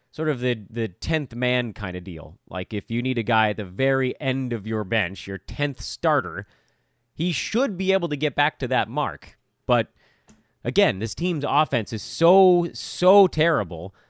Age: 30-49